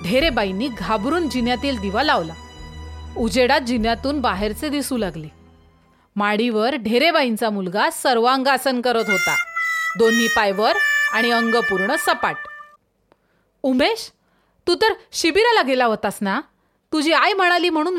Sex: female